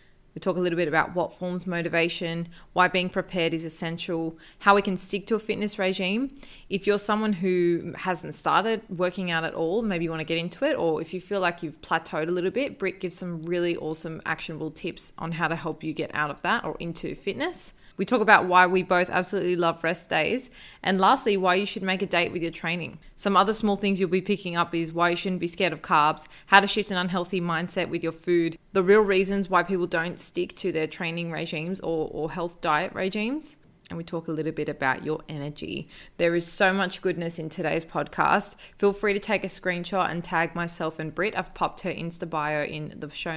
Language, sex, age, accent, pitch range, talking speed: English, female, 20-39, Australian, 165-190 Hz, 230 wpm